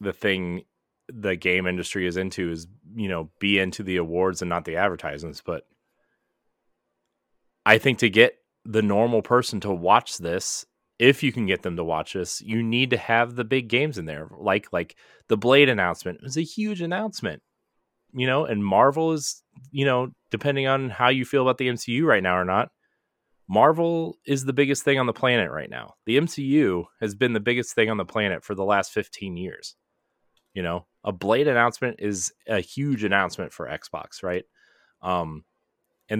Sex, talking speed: male, 190 wpm